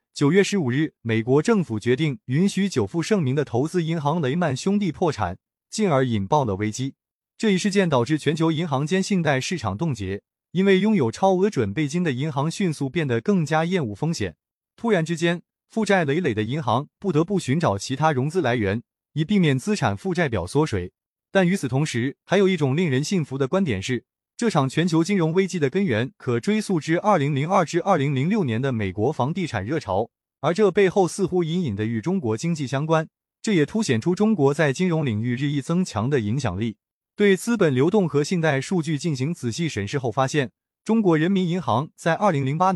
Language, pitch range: Chinese, 130-185 Hz